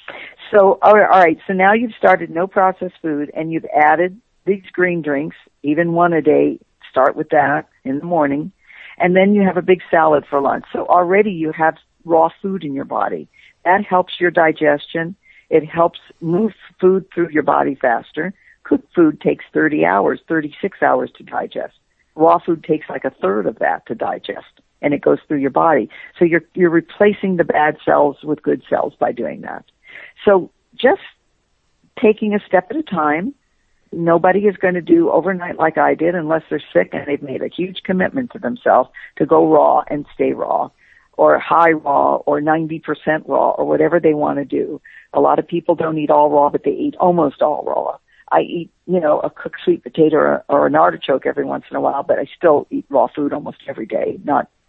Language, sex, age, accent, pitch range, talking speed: English, female, 50-69, American, 155-190 Hz, 195 wpm